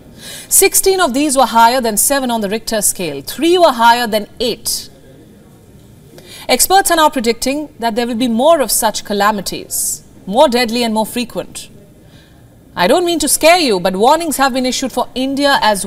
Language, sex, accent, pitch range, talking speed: English, female, Indian, 210-285 Hz, 180 wpm